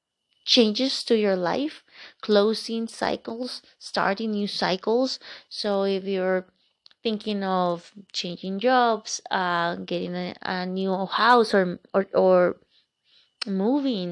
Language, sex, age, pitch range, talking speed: English, female, 20-39, 175-205 Hz, 110 wpm